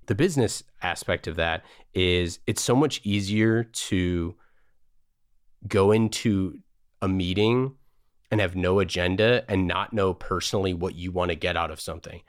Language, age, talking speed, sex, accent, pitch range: English, 30-49, 150 wpm, male, American, 90-110 Hz